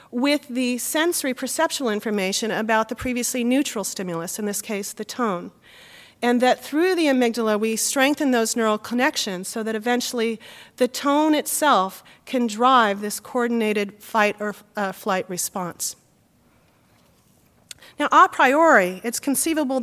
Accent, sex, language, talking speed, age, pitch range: American, female, English, 135 wpm, 40-59, 215-275 Hz